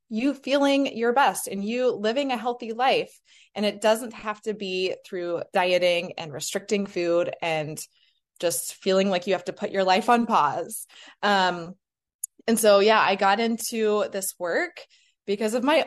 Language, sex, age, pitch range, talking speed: English, female, 20-39, 185-230 Hz, 170 wpm